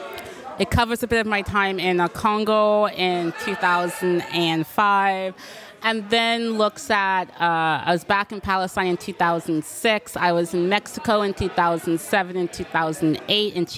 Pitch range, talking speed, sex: 175-215 Hz, 145 wpm, female